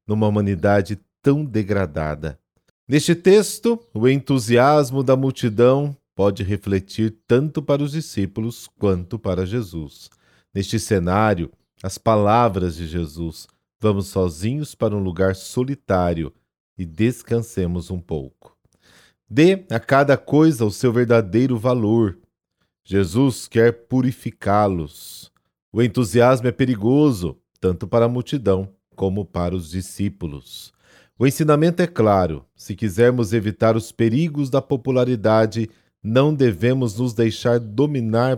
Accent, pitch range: Brazilian, 95-125 Hz